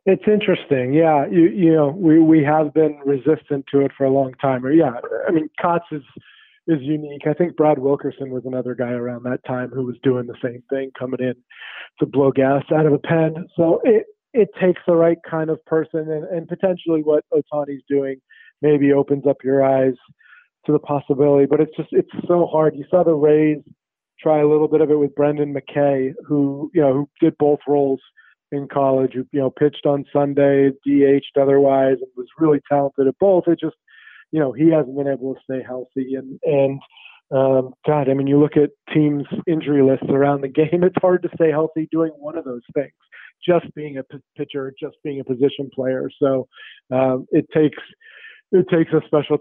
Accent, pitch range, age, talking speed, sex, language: American, 135-160 Hz, 40-59, 205 wpm, male, English